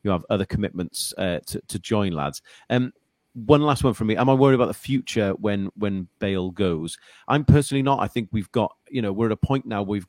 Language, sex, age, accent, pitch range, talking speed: English, male, 30-49, British, 95-115 Hz, 245 wpm